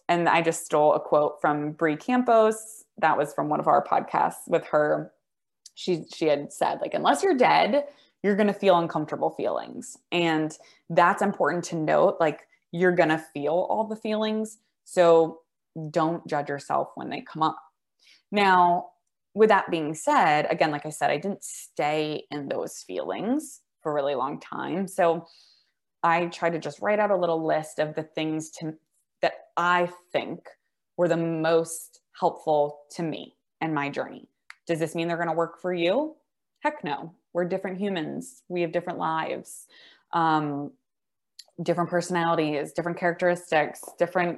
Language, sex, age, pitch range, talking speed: English, female, 20-39, 155-185 Hz, 165 wpm